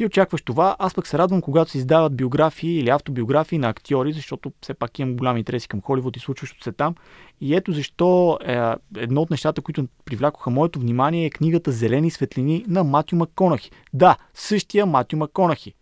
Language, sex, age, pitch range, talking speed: Bulgarian, male, 20-39, 130-175 Hz, 185 wpm